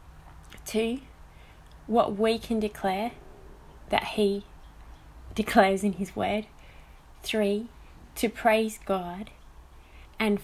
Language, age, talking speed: English, 20-39, 90 wpm